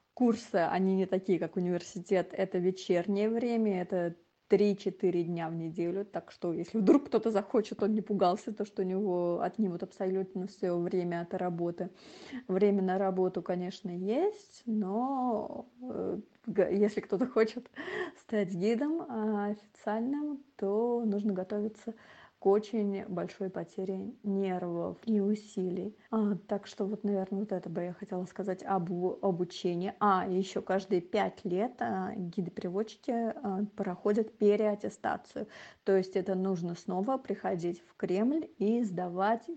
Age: 30-49